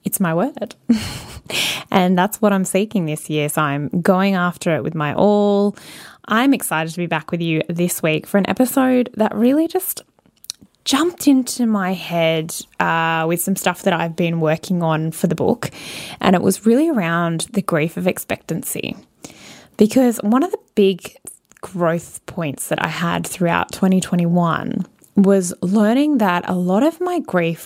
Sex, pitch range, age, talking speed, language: female, 170-220 Hz, 10-29, 170 wpm, English